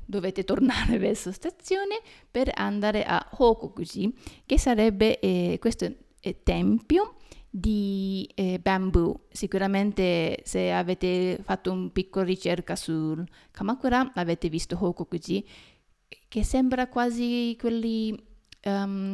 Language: Italian